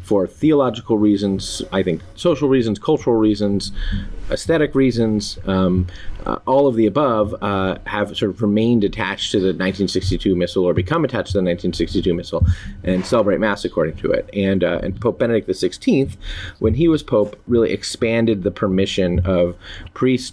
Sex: male